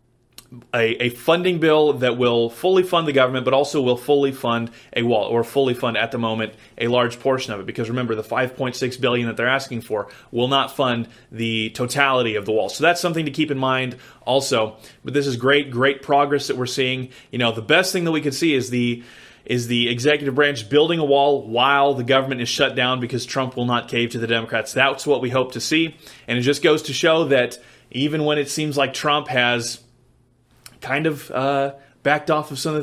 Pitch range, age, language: 120-145 Hz, 30-49, English